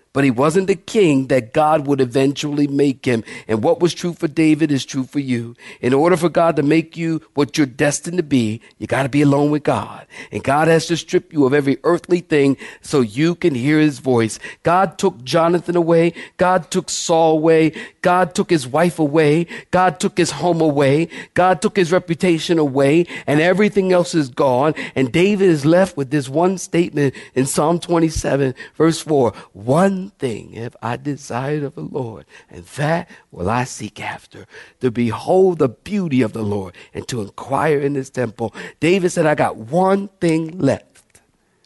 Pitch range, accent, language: 135-180 Hz, American, English